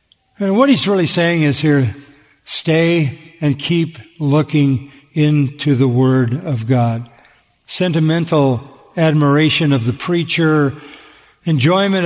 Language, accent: English, American